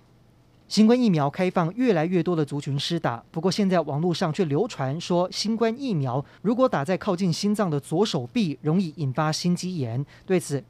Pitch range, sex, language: 140-195 Hz, male, Chinese